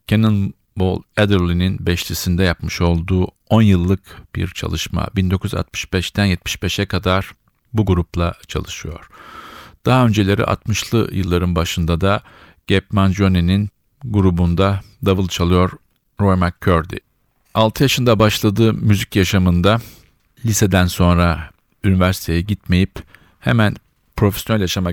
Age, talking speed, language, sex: 50-69, 100 wpm, Turkish, male